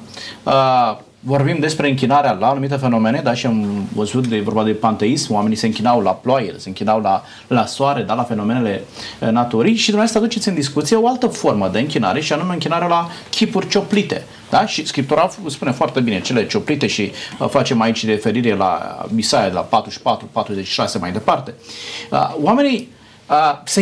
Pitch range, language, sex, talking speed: 115-165 Hz, Romanian, male, 170 wpm